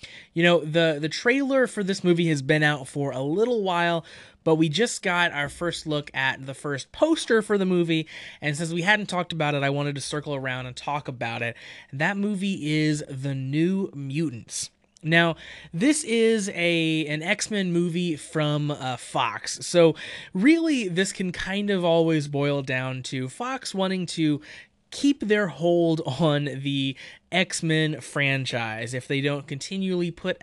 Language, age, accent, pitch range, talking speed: English, 20-39, American, 135-185 Hz, 170 wpm